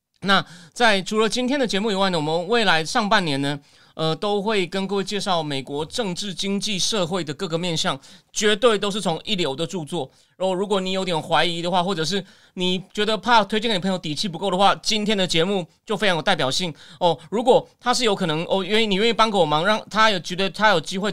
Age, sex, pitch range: 30-49, male, 170-230 Hz